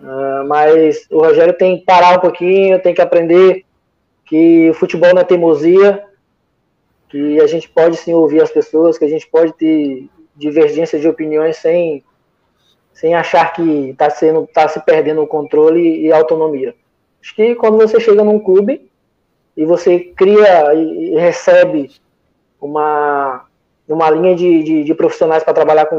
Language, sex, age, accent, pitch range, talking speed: Portuguese, male, 20-39, Brazilian, 155-195 Hz, 160 wpm